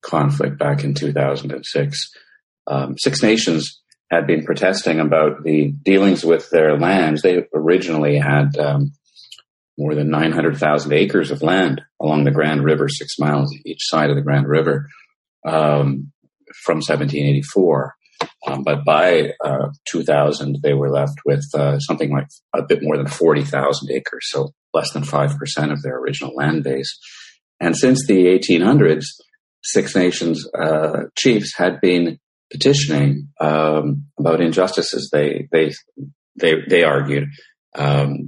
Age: 40-59